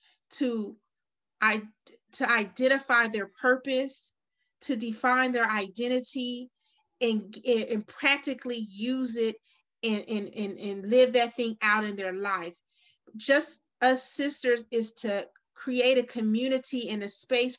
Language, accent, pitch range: English, American, 220-255 Hz